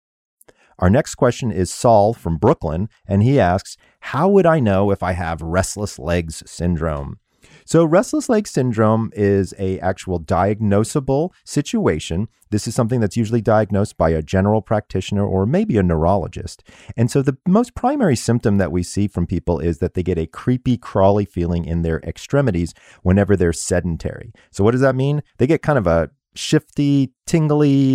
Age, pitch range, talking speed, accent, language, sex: 30-49, 90-130 Hz, 170 wpm, American, English, male